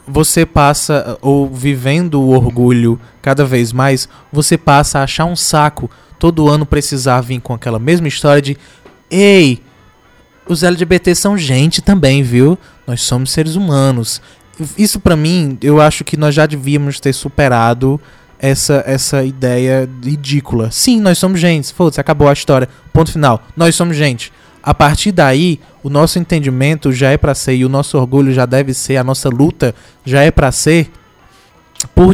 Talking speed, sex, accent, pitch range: 165 wpm, male, Brazilian, 130-160 Hz